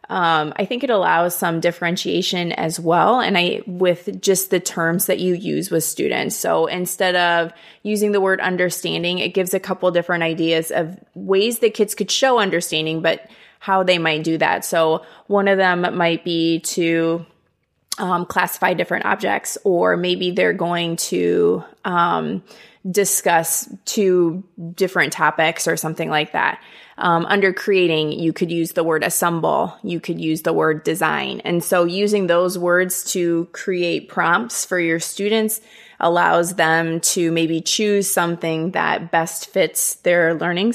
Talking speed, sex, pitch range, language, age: 160 wpm, female, 170-200 Hz, English, 20-39